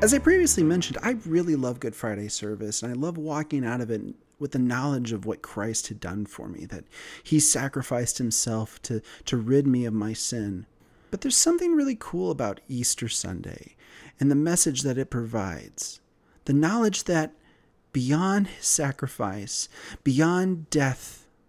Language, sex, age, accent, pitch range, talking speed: English, male, 30-49, American, 125-180 Hz, 170 wpm